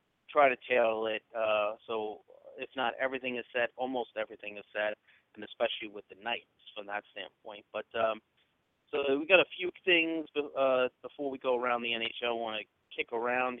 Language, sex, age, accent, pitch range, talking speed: English, male, 30-49, American, 110-130 Hz, 190 wpm